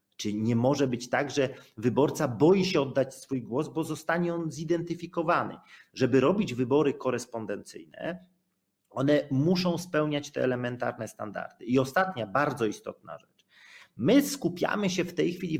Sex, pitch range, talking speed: male, 125-170 Hz, 140 wpm